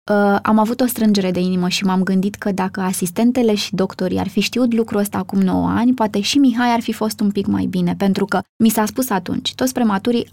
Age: 20-39